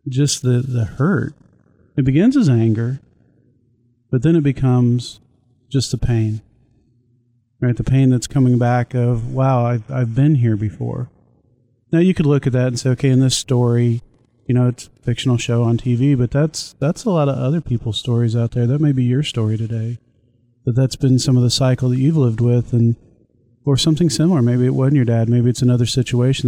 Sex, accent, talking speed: male, American, 205 wpm